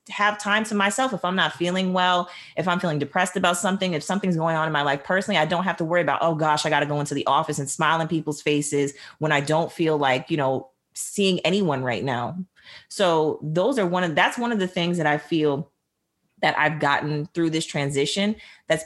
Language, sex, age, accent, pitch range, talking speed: English, female, 30-49, American, 150-185 Hz, 235 wpm